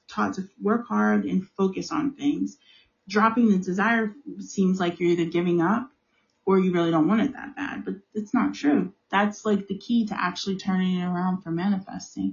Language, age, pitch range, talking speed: English, 30-49, 175-210 Hz, 195 wpm